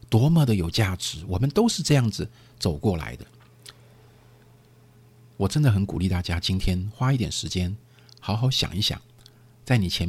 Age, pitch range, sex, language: 50-69, 90-120 Hz, male, Chinese